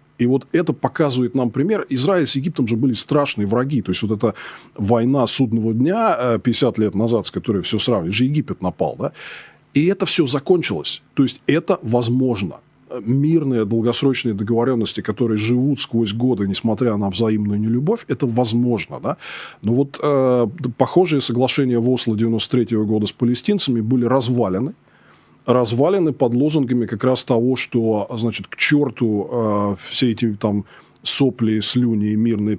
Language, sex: Russian, male